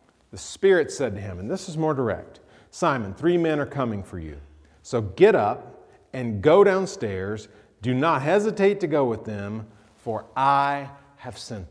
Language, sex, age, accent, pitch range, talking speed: English, male, 40-59, American, 105-165 Hz, 175 wpm